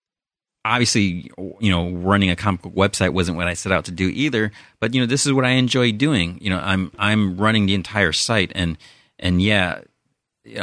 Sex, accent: male, American